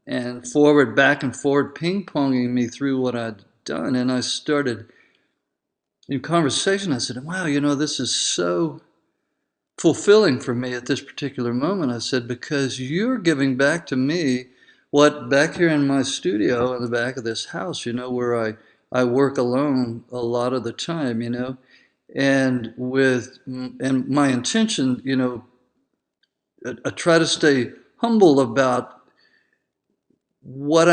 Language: English